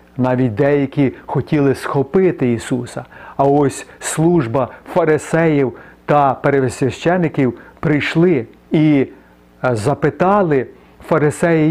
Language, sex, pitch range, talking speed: Ukrainian, male, 130-175 Hz, 75 wpm